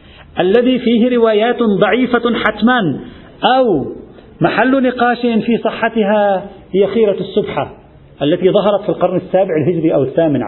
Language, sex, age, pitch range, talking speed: Arabic, male, 40-59, 160-225 Hz, 120 wpm